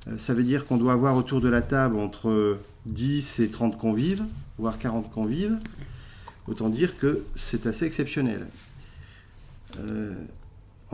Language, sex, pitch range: French, male, 105-130 Hz